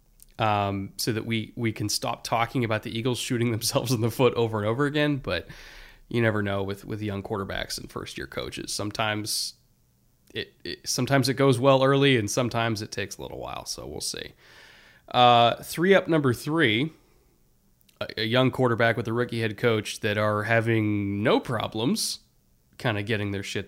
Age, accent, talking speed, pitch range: 20-39, American, 185 wpm, 105-130 Hz